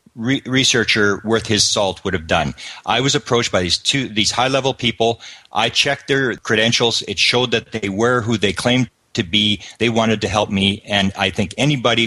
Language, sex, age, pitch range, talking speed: English, male, 40-59, 105-125 Hz, 200 wpm